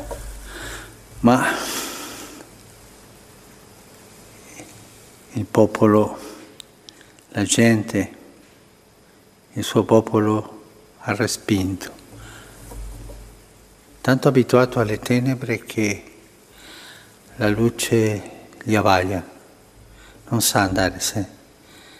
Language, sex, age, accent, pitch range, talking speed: Italian, male, 60-79, native, 105-115 Hz, 65 wpm